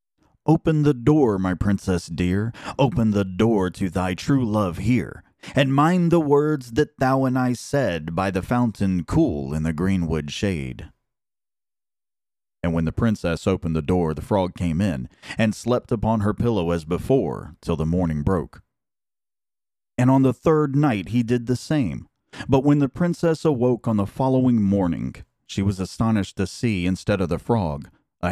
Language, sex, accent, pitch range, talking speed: English, male, American, 95-125 Hz, 170 wpm